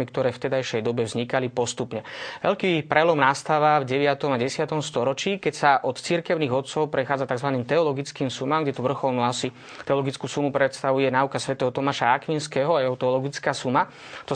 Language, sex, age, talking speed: Slovak, male, 20-39, 165 wpm